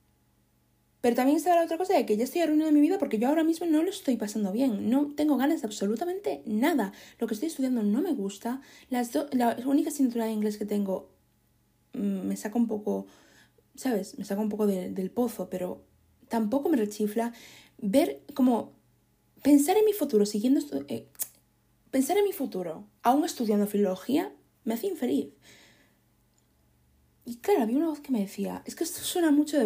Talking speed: 190 wpm